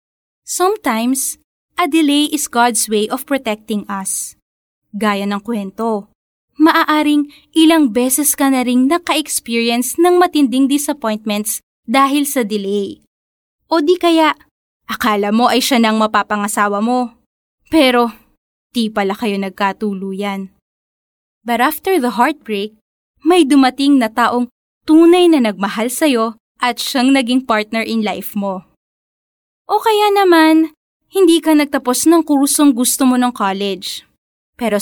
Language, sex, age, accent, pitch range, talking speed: Filipino, female, 20-39, native, 220-305 Hz, 125 wpm